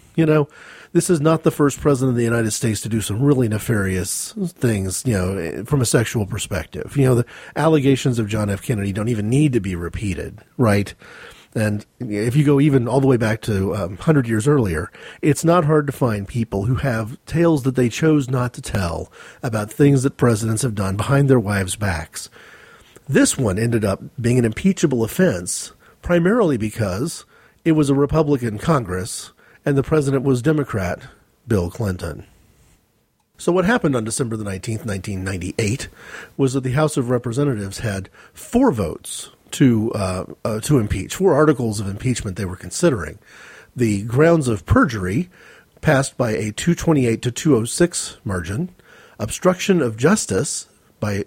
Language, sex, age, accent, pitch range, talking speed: English, male, 40-59, American, 105-150 Hz, 170 wpm